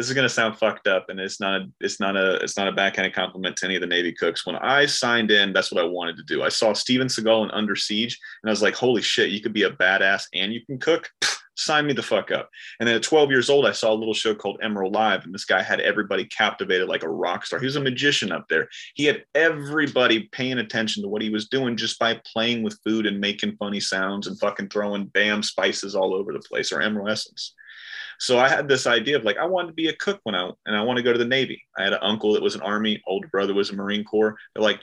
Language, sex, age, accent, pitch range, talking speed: English, male, 30-49, American, 100-135 Hz, 285 wpm